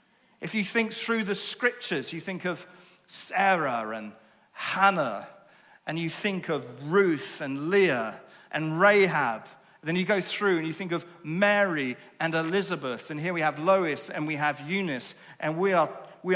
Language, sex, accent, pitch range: English, male, British, 135-190 Hz